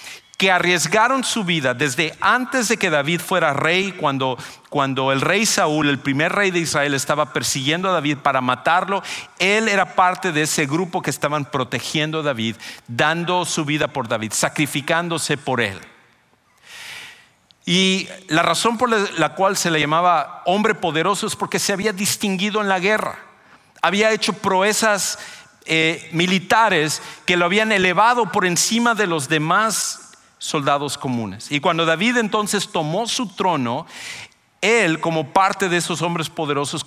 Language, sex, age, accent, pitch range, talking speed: English, male, 50-69, Mexican, 150-195 Hz, 155 wpm